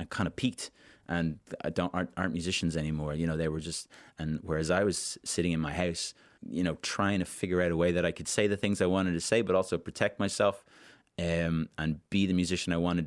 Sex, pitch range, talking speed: male, 80-90 Hz, 240 wpm